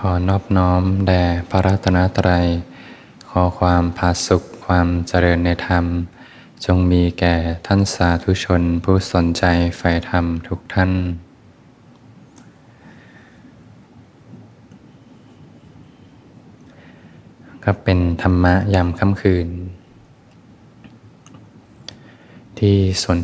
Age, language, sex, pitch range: 20-39, Thai, male, 85-95 Hz